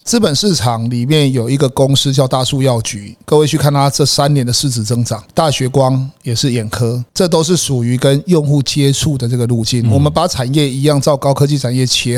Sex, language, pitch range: male, Chinese, 120-150 Hz